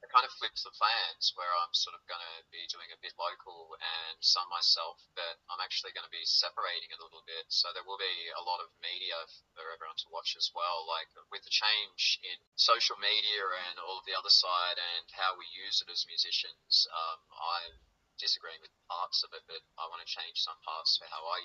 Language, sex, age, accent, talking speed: English, male, 20-39, Australian, 225 wpm